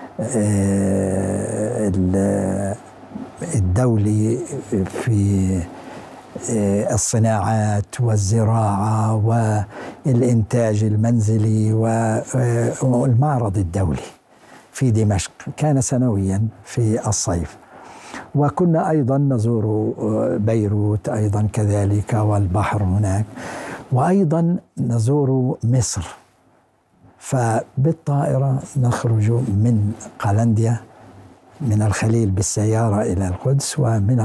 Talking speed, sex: 60 wpm, male